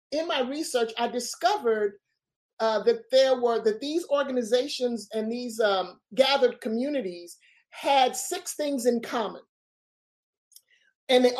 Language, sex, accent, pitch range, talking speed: English, male, American, 225-295 Hz, 120 wpm